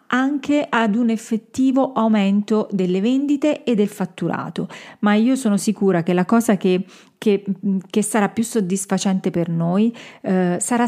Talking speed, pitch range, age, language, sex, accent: 145 wpm, 190-245 Hz, 40-59, Italian, female, native